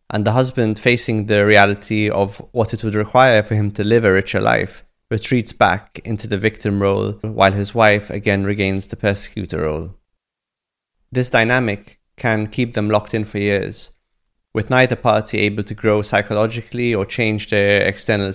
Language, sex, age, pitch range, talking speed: English, male, 30-49, 105-115 Hz, 170 wpm